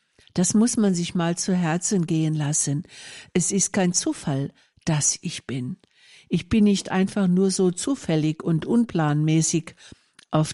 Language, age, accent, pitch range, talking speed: German, 60-79, German, 155-195 Hz, 150 wpm